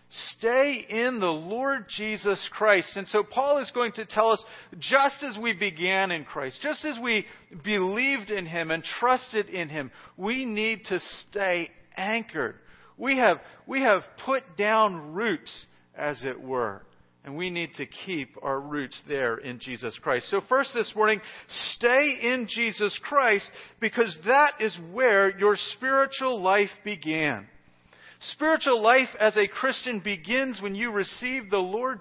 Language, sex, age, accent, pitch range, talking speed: English, male, 40-59, American, 190-255 Hz, 155 wpm